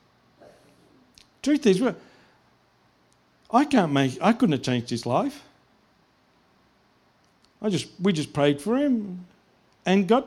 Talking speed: 115 wpm